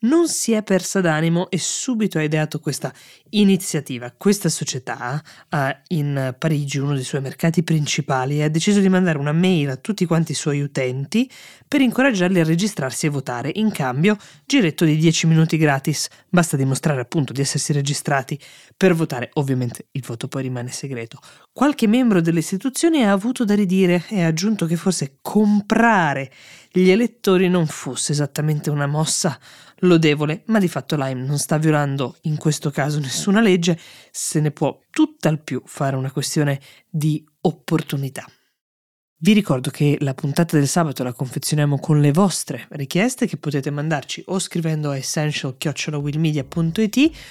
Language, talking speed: Italian, 160 wpm